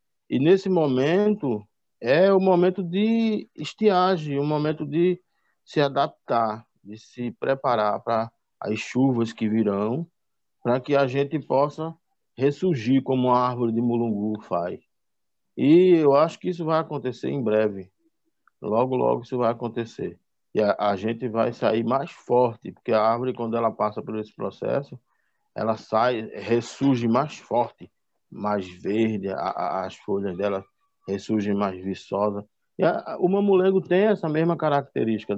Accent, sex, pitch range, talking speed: Brazilian, male, 110-155 Hz, 150 wpm